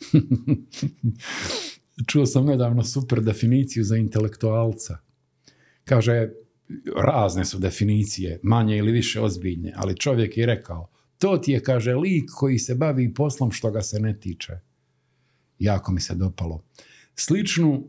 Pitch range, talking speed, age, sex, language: 95-130 Hz, 130 wpm, 50-69, male, Croatian